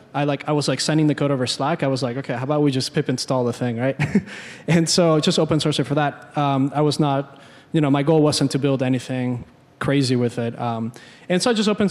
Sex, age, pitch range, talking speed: male, 20-39, 135-160 Hz, 260 wpm